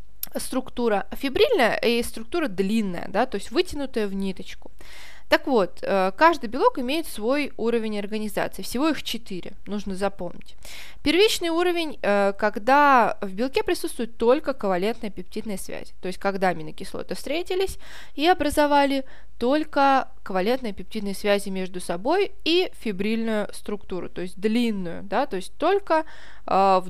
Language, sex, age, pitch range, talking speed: Russian, female, 20-39, 195-285 Hz, 130 wpm